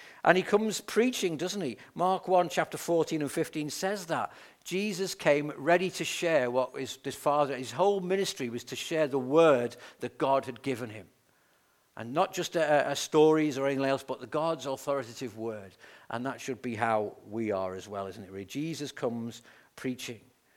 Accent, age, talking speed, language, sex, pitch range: British, 50-69, 185 wpm, English, male, 125-170 Hz